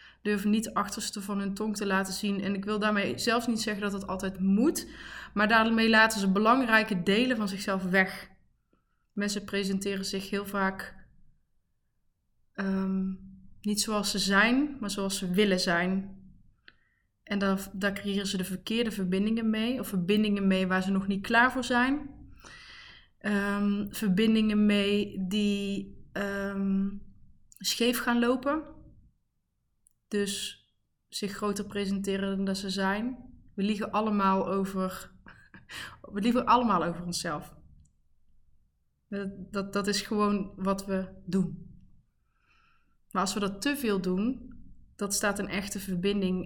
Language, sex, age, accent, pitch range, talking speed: Dutch, female, 20-39, Dutch, 190-215 Hz, 135 wpm